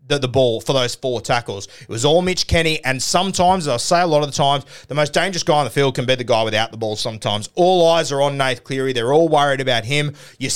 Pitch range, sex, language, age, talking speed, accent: 130-155 Hz, male, English, 30-49, 275 wpm, Australian